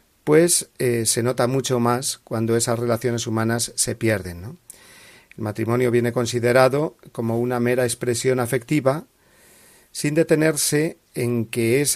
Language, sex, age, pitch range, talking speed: Spanish, male, 40-59, 115-135 Hz, 130 wpm